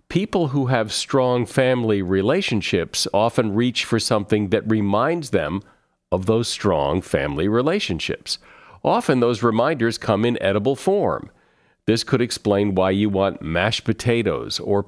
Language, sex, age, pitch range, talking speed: English, male, 50-69, 100-130 Hz, 135 wpm